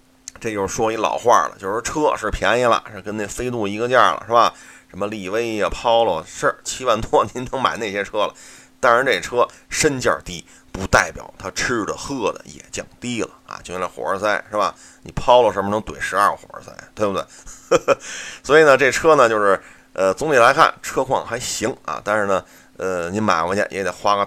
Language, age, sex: Chinese, 30-49, male